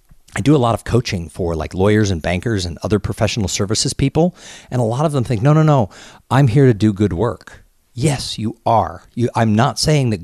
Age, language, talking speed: 50-69, English, 225 wpm